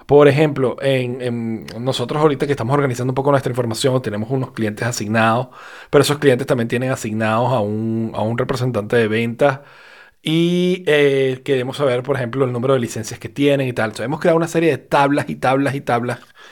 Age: 30-49